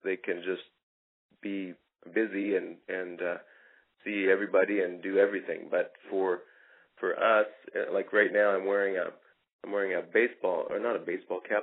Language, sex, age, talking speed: English, male, 30-49, 165 wpm